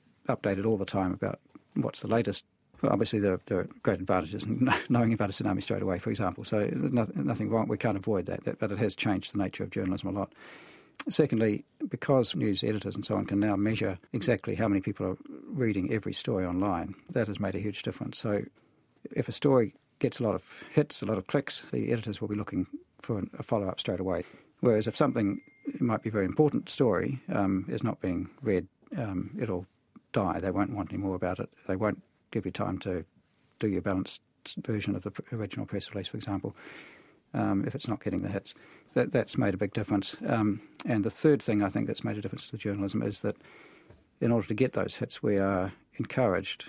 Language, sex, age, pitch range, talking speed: English, male, 50-69, 95-115 Hz, 215 wpm